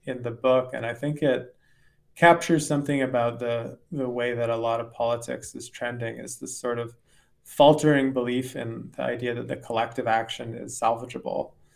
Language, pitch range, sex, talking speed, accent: English, 120-140 Hz, male, 180 wpm, American